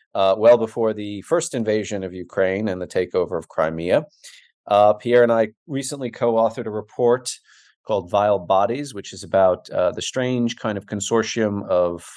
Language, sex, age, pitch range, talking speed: English, male, 40-59, 90-115 Hz, 170 wpm